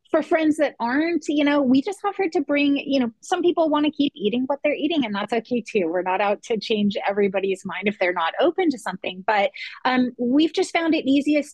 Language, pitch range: English, 205-270 Hz